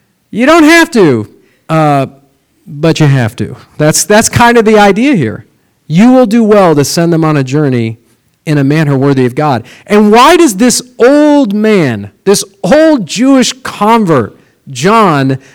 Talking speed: 165 wpm